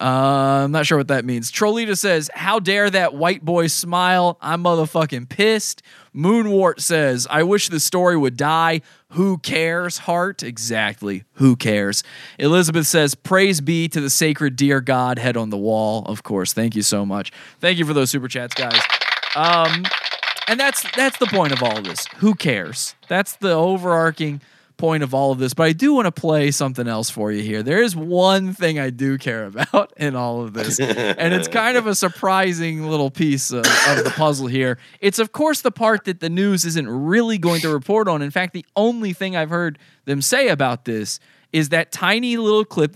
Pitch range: 135-185 Hz